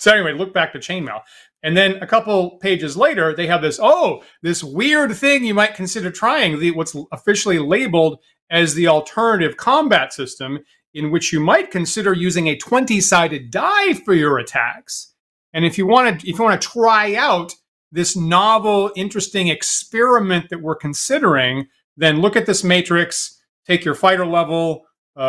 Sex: male